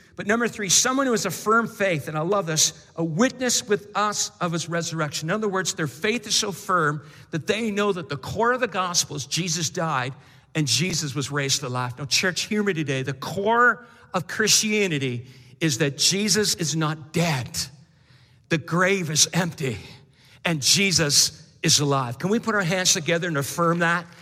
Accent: American